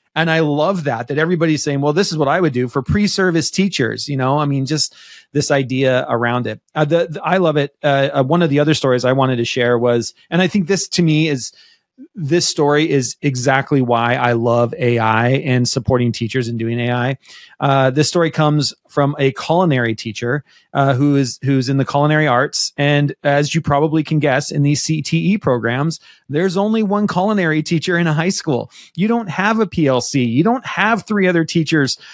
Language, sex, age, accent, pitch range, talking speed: English, male, 30-49, American, 135-175 Hz, 205 wpm